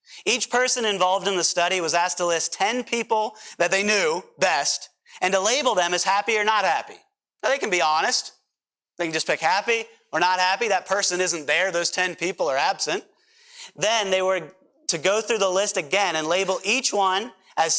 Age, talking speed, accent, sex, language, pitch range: 30-49, 205 wpm, American, male, English, 180-230 Hz